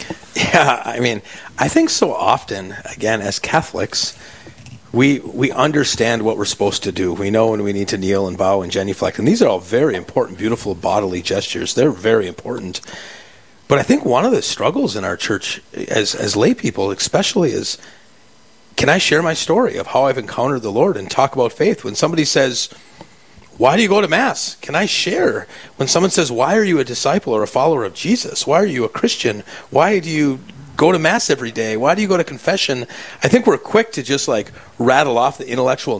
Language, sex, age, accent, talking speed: English, male, 40-59, American, 210 wpm